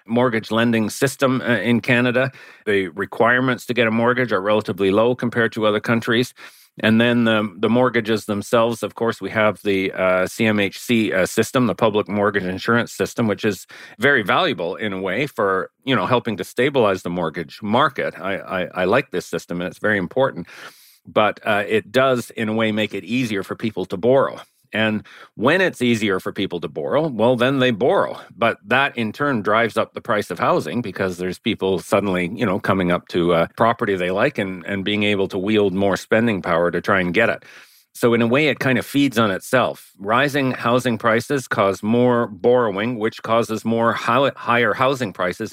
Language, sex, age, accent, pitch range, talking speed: English, male, 40-59, American, 95-115 Hz, 200 wpm